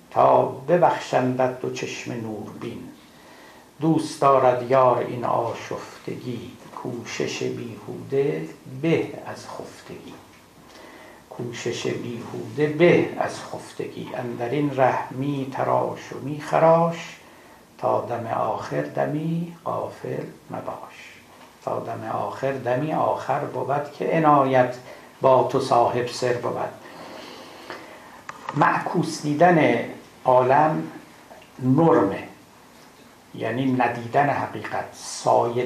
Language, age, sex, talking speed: Persian, 60-79, male, 90 wpm